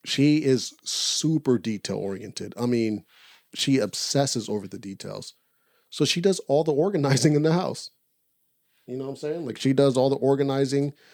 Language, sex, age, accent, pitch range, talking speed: English, male, 30-49, American, 110-140 Hz, 165 wpm